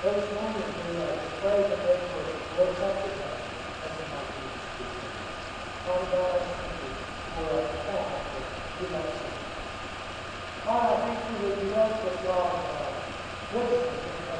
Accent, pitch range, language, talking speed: American, 185-245 Hz, English, 115 wpm